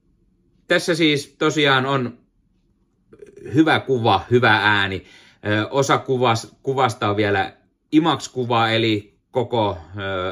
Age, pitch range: 30-49, 95-130 Hz